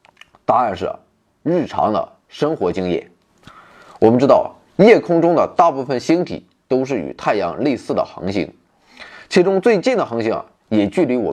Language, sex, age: Chinese, male, 20-39